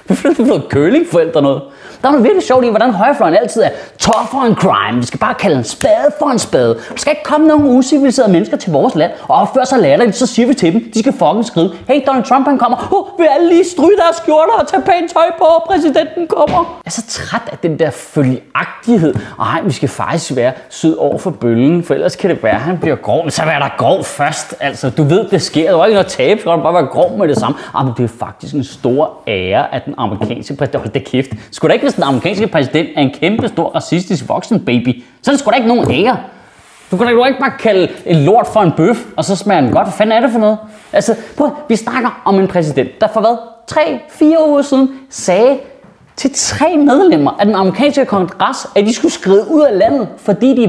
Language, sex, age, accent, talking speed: Danish, male, 30-49, native, 245 wpm